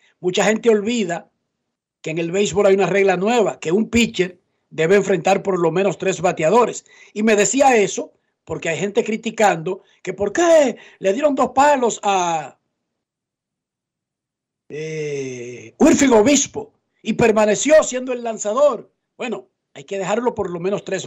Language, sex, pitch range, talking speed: Spanish, male, 185-230 Hz, 150 wpm